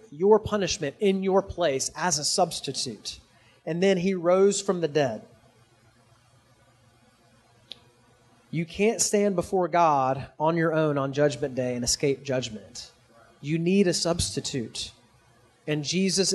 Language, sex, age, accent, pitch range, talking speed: English, male, 30-49, American, 135-180 Hz, 130 wpm